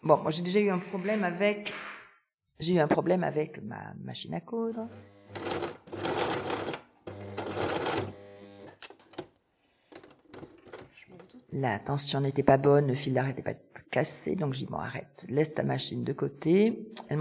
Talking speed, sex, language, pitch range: 135 wpm, female, French, 145-190 Hz